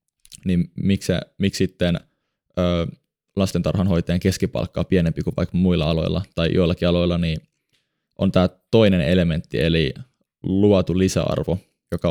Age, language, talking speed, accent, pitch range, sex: 20-39, Finnish, 115 wpm, native, 85-100 Hz, male